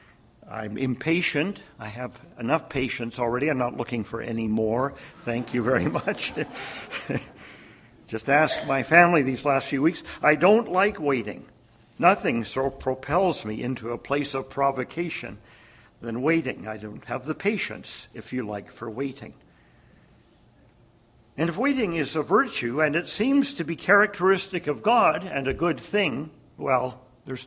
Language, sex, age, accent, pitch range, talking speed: English, male, 50-69, American, 120-160 Hz, 155 wpm